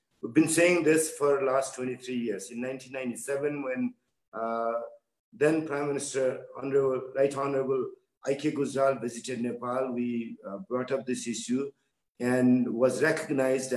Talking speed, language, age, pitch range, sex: 130 wpm, English, 50-69, 120-140 Hz, male